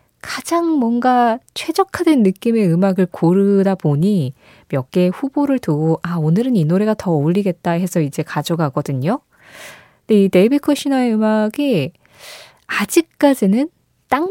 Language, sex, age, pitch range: Korean, female, 20-39, 160-235 Hz